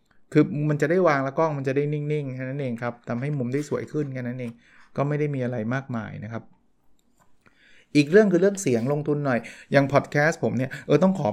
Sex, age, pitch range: male, 20-39, 115-145 Hz